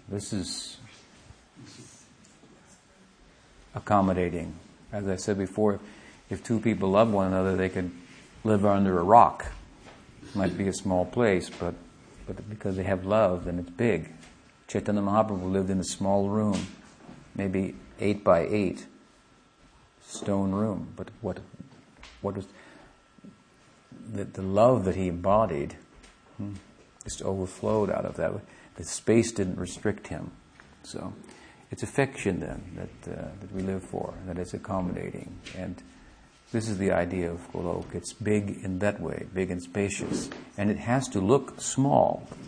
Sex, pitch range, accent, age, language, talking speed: male, 90-110 Hz, American, 50-69, English, 145 wpm